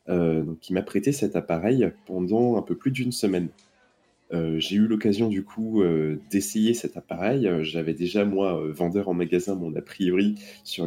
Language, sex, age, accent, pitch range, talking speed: French, male, 20-39, French, 85-115 Hz, 175 wpm